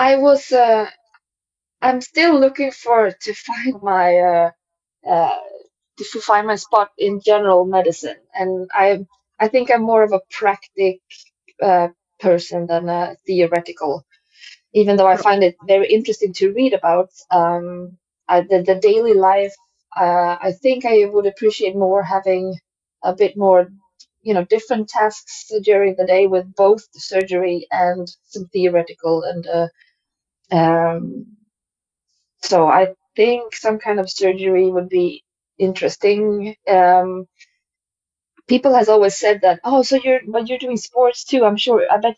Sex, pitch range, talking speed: female, 180-230 Hz, 150 wpm